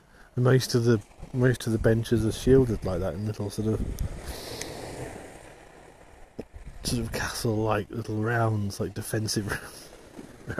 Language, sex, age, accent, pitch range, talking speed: English, male, 30-49, British, 95-120 Hz, 135 wpm